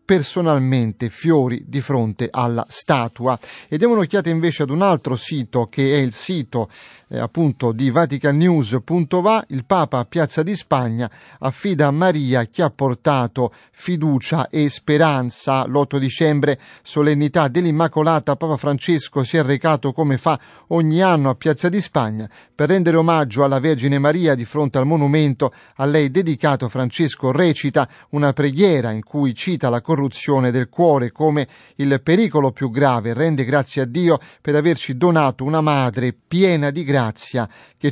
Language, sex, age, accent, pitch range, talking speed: Italian, male, 30-49, native, 130-160 Hz, 150 wpm